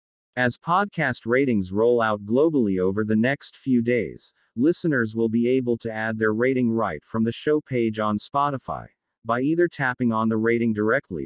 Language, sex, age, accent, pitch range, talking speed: English, male, 40-59, American, 105-135 Hz, 175 wpm